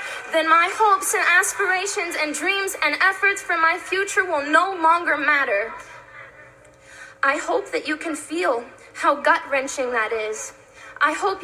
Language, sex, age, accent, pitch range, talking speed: English, female, 10-29, American, 290-370 Hz, 145 wpm